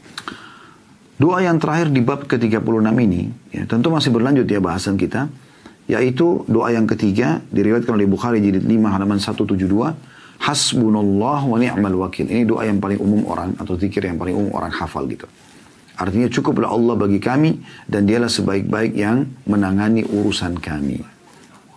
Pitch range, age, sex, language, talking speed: 100-130 Hz, 40-59, male, Indonesian, 150 wpm